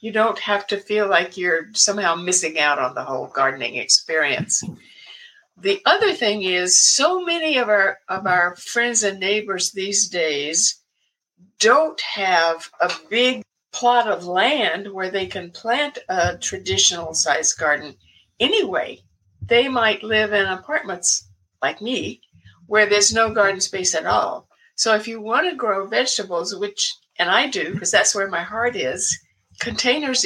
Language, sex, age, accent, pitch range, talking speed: English, female, 60-79, American, 180-240 Hz, 155 wpm